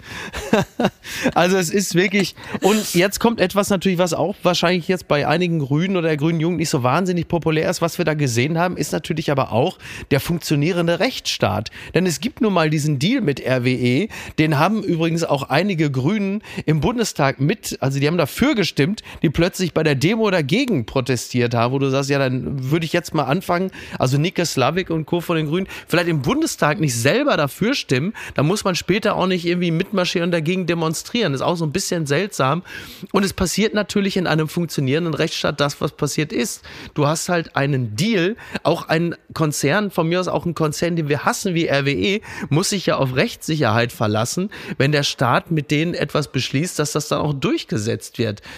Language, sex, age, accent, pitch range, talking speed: German, male, 30-49, German, 145-180 Hz, 200 wpm